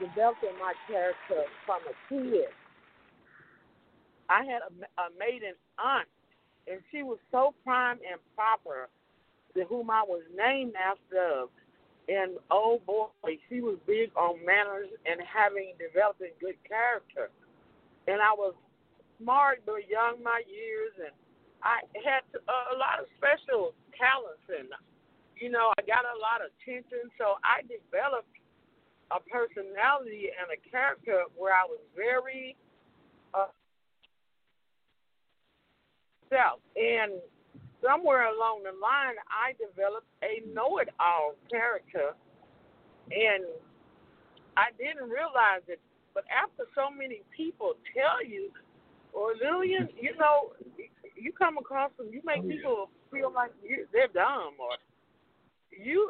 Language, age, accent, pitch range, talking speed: English, 50-69, American, 200-300 Hz, 130 wpm